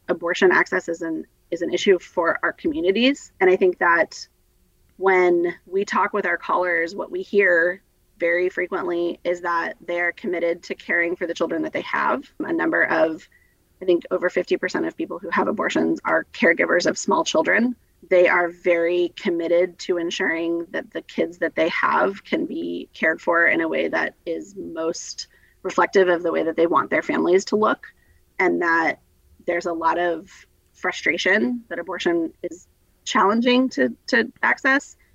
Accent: American